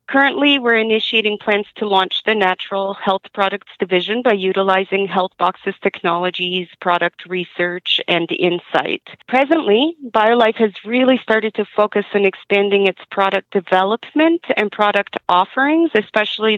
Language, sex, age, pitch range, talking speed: English, female, 40-59, 190-220 Hz, 130 wpm